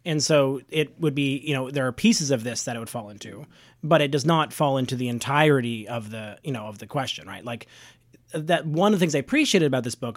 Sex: male